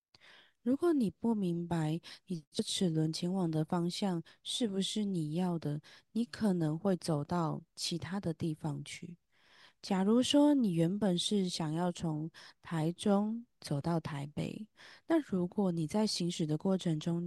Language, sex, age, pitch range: Chinese, female, 20-39, 165-215 Hz